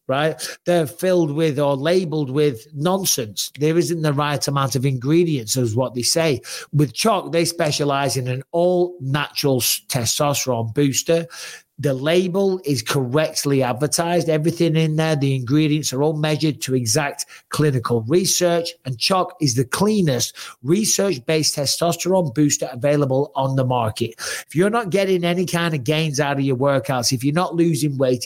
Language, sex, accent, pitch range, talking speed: English, male, British, 140-170 Hz, 160 wpm